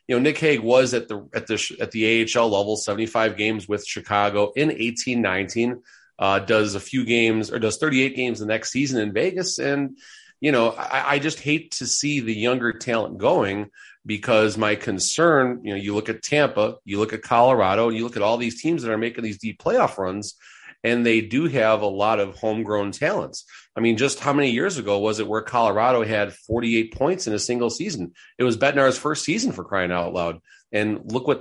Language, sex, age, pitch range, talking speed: English, male, 30-49, 105-125 Hz, 210 wpm